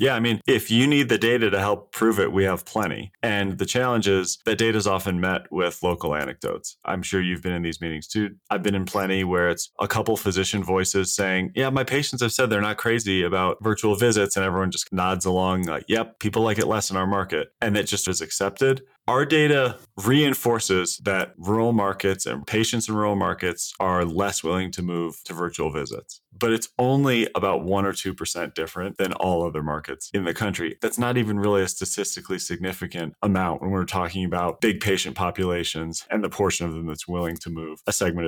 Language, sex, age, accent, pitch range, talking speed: English, male, 30-49, American, 85-110 Hz, 215 wpm